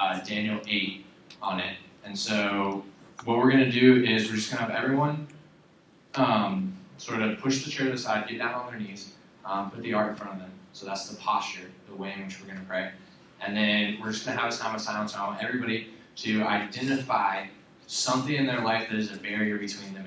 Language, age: English, 20-39